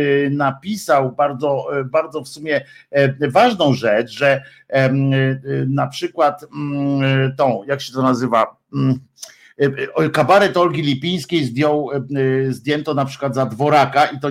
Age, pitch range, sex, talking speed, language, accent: 50-69, 135-160 Hz, male, 105 wpm, Polish, native